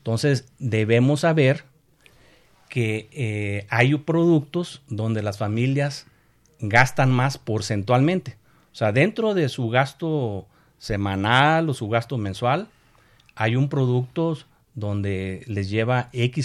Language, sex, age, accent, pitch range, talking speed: Spanish, male, 50-69, Mexican, 115-150 Hz, 115 wpm